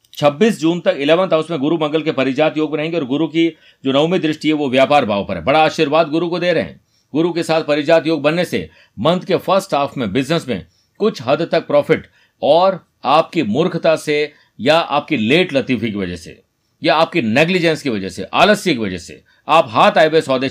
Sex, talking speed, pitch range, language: male, 215 wpm, 135-165 Hz, Hindi